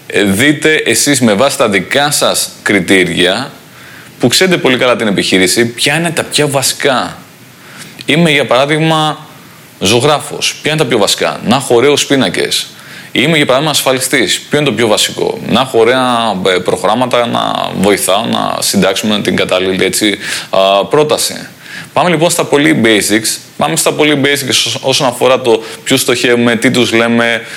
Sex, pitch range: male, 110-130 Hz